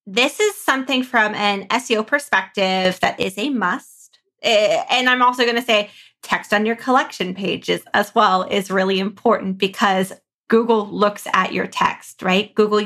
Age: 20-39